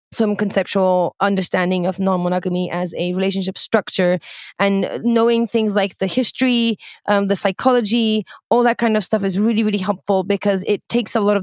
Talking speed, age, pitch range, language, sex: 175 wpm, 20-39, 195-225 Hz, English, female